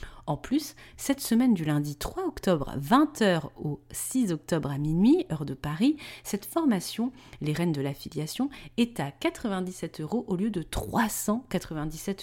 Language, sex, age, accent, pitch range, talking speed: French, female, 30-49, French, 155-220 Hz, 150 wpm